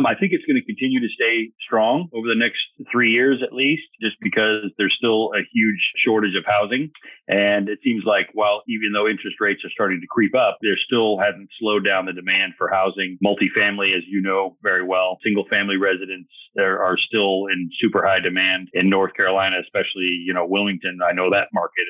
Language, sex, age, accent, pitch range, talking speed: English, male, 40-59, American, 95-110 Hz, 205 wpm